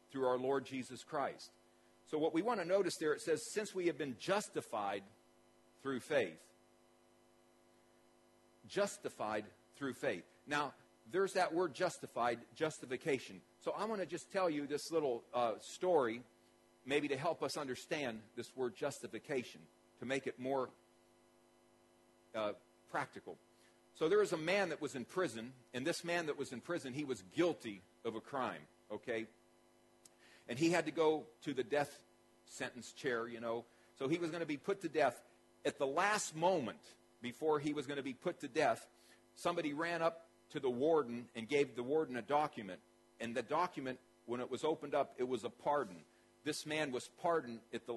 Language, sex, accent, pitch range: English, male, American, 115-160 Hz